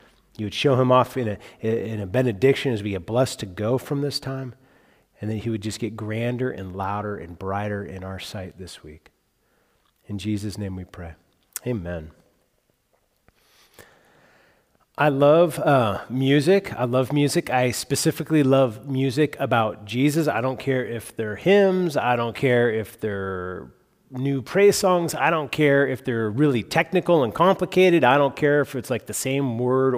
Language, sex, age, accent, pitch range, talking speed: English, male, 30-49, American, 115-150 Hz, 170 wpm